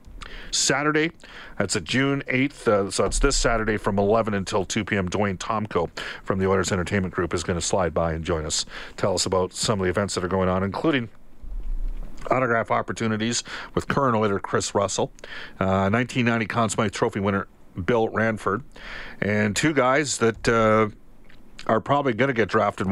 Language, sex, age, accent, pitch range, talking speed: English, male, 40-59, American, 105-130 Hz, 175 wpm